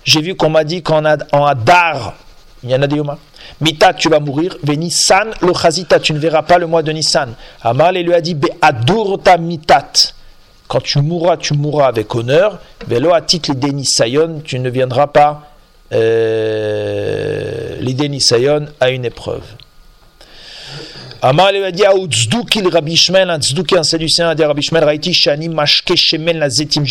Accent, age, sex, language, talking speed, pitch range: French, 40-59, male, French, 135 wpm, 135-165 Hz